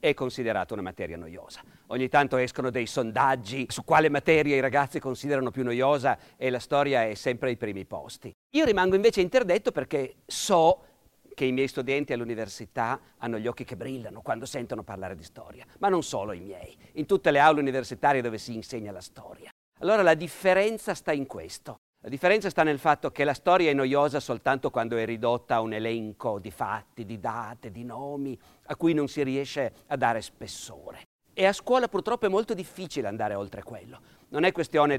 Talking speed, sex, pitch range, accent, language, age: 190 wpm, male, 120-155 Hz, native, Italian, 50-69